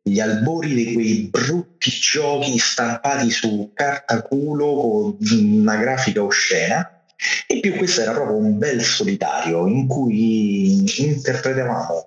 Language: Italian